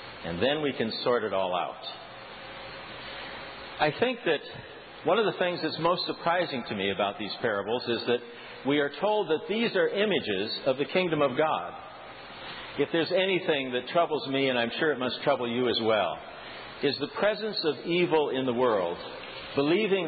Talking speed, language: 180 wpm, English